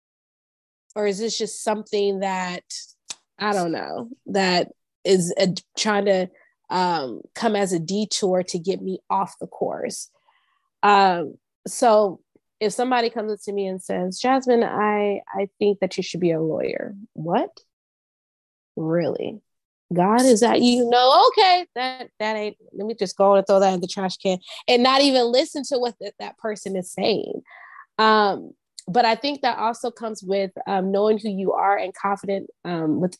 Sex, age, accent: female, 20-39, American